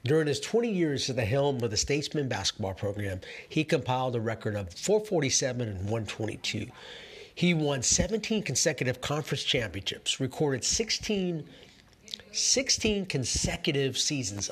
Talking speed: 130 wpm